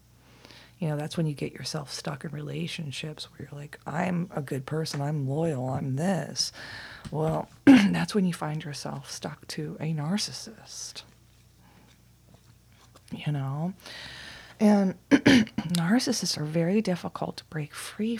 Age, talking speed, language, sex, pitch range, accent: 30-49, 135 wpm, English, female, 145-175 Hz, American